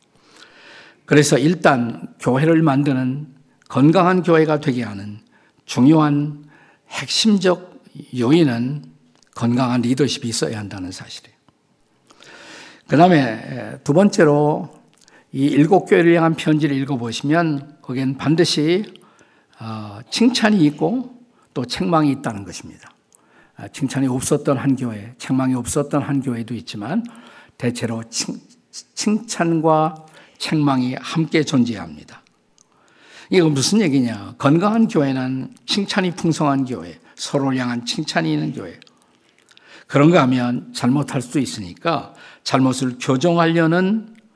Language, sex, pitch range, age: Korean, male, 125-165 Hz, 50-69